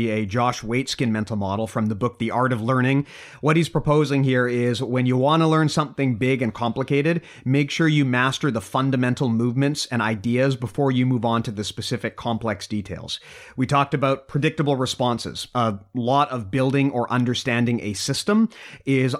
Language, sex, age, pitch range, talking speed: English, male, 30-49, 115-140 Hz, 180 wpm